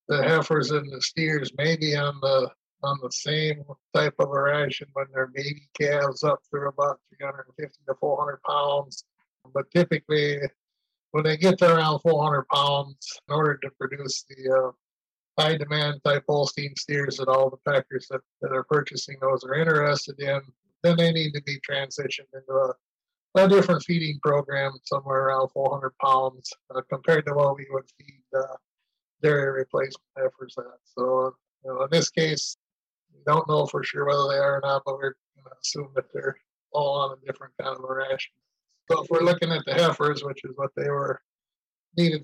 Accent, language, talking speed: American, English, 185 wpm